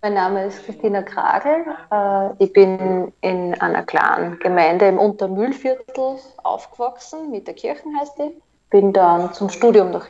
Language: German